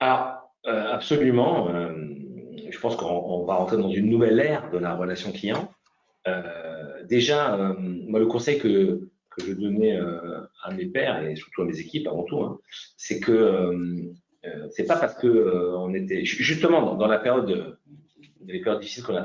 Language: French